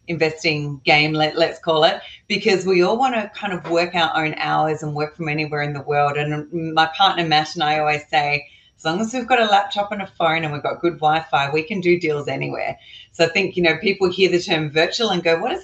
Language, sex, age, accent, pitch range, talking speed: English, female, 30-49, Australian, 155-190 Hz, 250 wpm